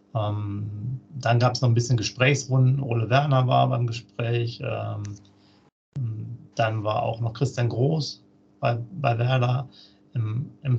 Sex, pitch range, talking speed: male, 105-125 Hz, 140 wpm